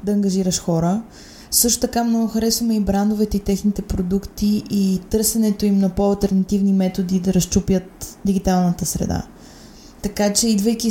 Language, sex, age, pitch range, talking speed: Bulgarian, female, 20-39, 185-215 Hz, 135 wpm